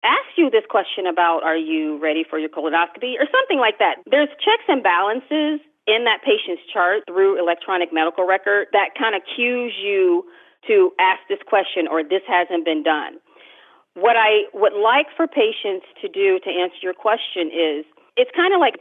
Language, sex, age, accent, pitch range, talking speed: English, female, 40-59, American, 175-275 Hz, 185 wpm